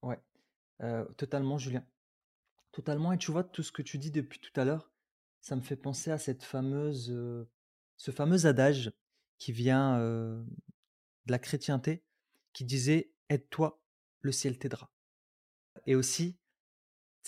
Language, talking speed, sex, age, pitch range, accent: French, 140 wpm, male, 30-49, 130-160 Hz, French